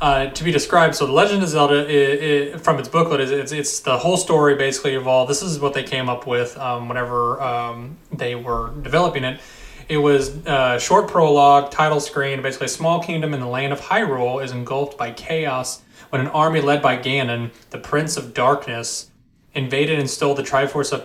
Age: 30-49